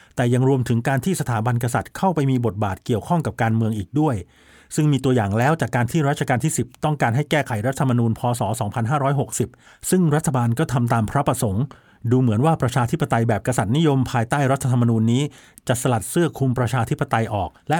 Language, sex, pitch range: Thai, male, 115-140 Hz